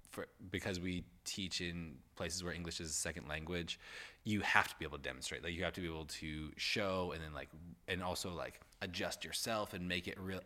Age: 20-39